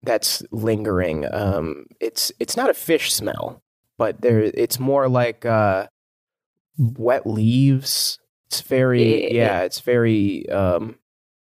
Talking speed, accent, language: 120 wpm, American, English